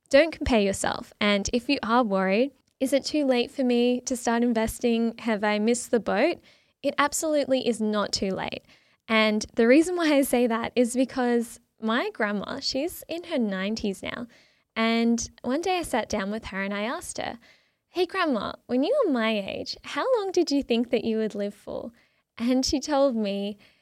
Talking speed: 195 wpm